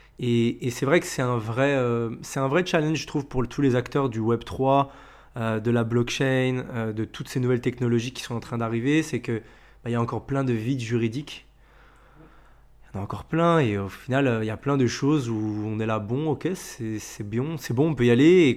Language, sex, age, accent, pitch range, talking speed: French, male, 20-39, French, 115-145 Hz, 255 wpm